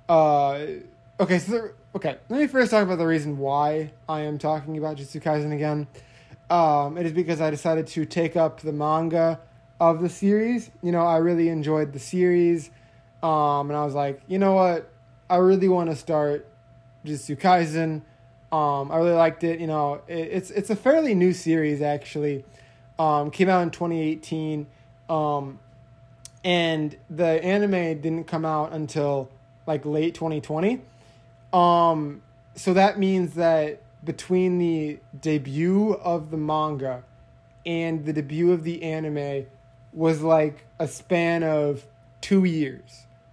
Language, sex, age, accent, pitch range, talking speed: English, male, 20-39, American, 140-170 Hz, 155 wpm